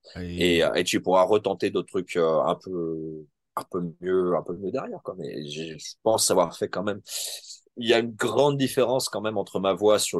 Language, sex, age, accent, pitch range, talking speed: French, male, 30-49, French, 85-115 Hz, 210 wpm